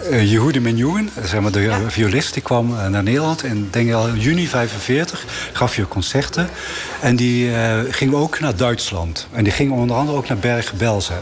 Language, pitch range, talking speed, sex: Dutch, 105-130 Hz, 185 wpm, male